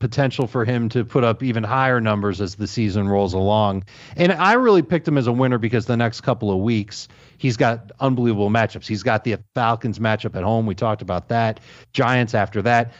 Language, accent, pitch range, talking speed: English, American, 115-145 Hz, 210 wpm